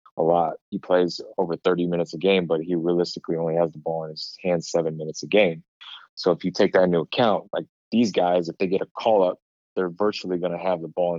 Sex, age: male, 20-39